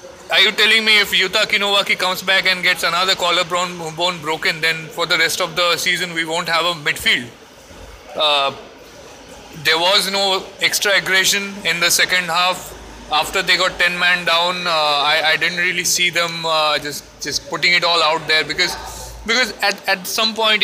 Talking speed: 185 wpm